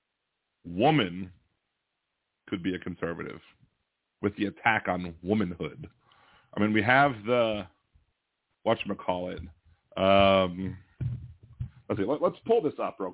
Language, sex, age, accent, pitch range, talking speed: English, male, 40-59, American, 105-150 Hz, 115 wpm